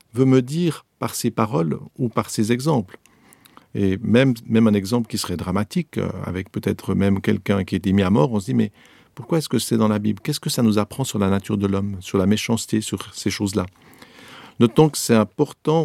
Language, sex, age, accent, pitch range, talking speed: French, male, 50-69, French, 105-135 Hz, 230 wpm